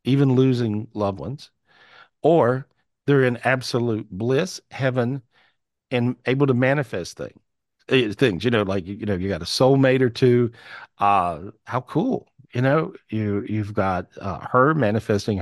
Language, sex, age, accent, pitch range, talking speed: English, male, 50-69, American, 110-135 Hz, 150 wpm